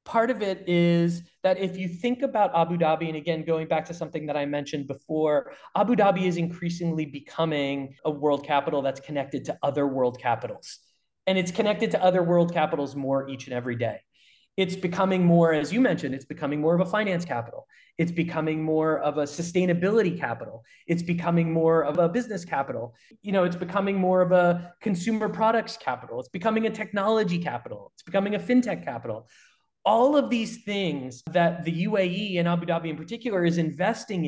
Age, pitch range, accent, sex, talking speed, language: 30-49, 155-200 Hz, American, male, 190 wpm, English